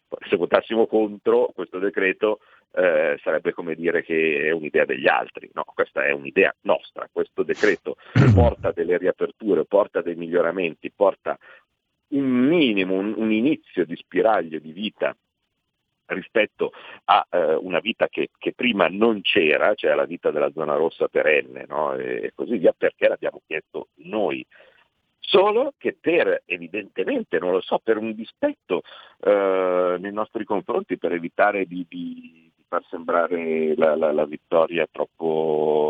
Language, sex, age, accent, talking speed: Italian, male, 50-69, native, 145 wpm